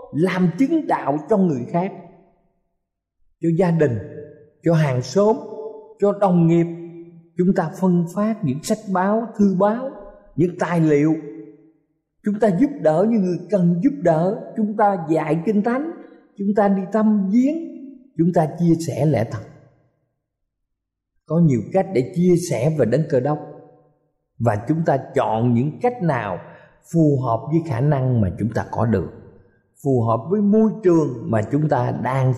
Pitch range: 125-185 Hz